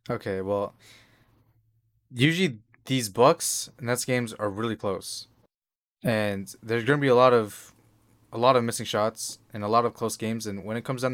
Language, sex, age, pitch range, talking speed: English, male, 20-39, 105-125 Hz, 185 wpm